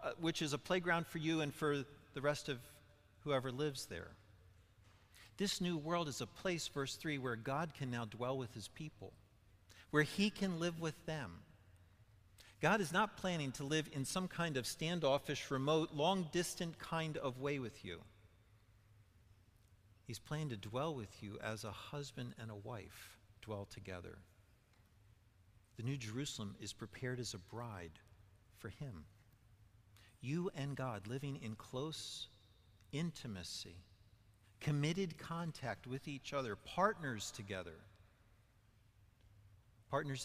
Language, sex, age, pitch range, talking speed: English, male, 50-69, 105-145 Hz, 140 wpm